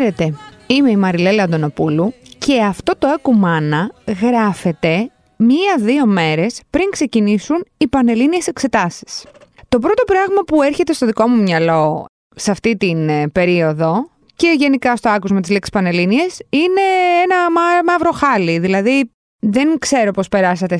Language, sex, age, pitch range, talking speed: Greek, female, 20-39, 190-255 Hz, 130 wpm